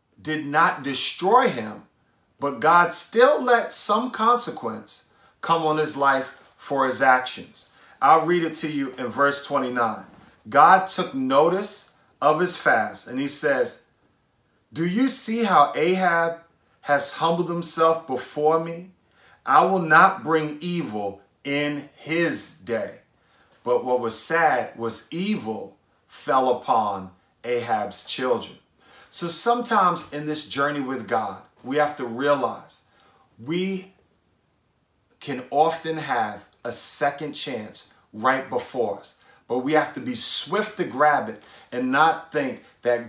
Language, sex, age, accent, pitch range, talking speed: English, male, 40-59, American, 140-175 Hz, 135 wpm